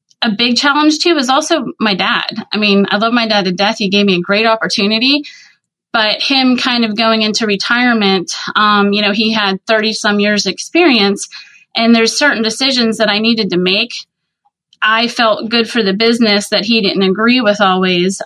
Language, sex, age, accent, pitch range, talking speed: English, female, 30-49, American, 195-225 Hz, 195 wpm